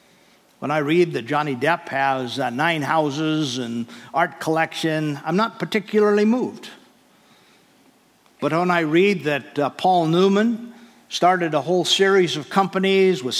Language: English